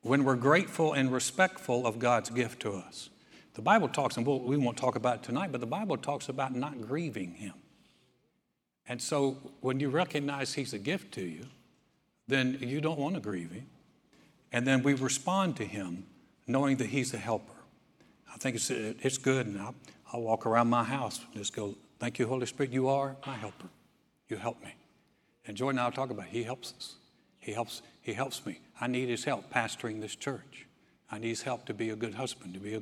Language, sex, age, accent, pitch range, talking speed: English, male, 60-79, American, 115-140 Hz, 210 wpm